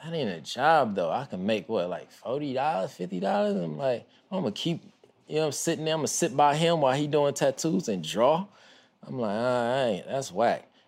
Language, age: English, 20-39